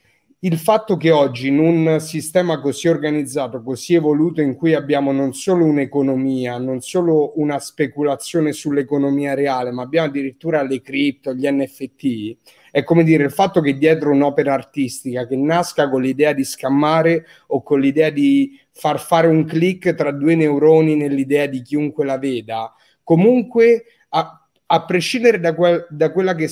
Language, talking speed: Italian, 155 wpm